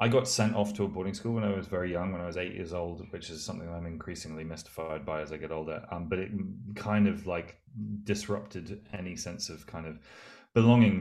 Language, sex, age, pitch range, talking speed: English, male, 20-39, 85-105 Hz, 235 wpm